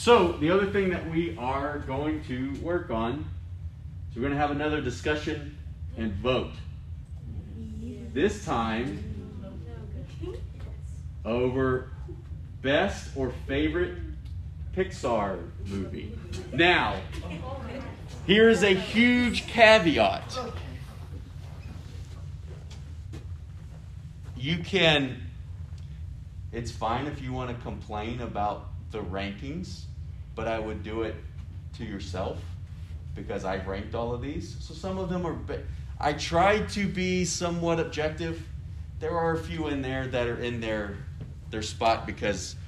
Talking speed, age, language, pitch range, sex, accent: 110 wpm, 30-49, English, 85-125 Hz, male, American